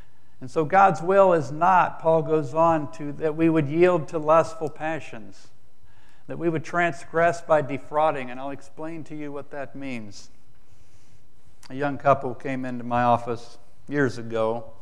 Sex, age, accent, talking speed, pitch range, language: male, 60-79, American, 160 wpm, 115-150 Hz, English